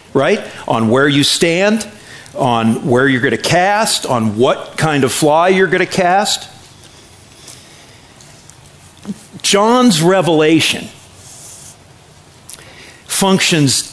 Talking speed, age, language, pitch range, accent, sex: 100 wpm, 50-69, English, 140-205 Hz, American, male